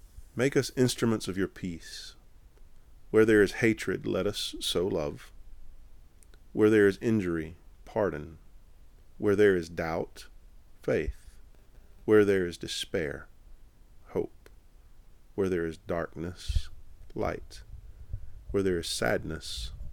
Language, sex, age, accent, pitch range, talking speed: English, male, 40-59, American, 80-110 Hz, 115 wpm